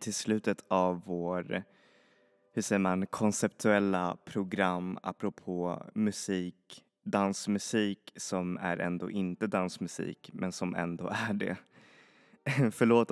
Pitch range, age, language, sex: 90-100 Hz, 20-39, Swedish, male